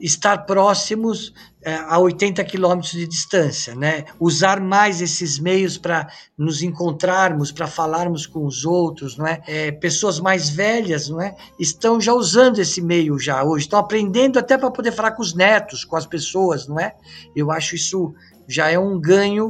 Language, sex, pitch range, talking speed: Portuguese, male, 165-210 Hz, 175 wpm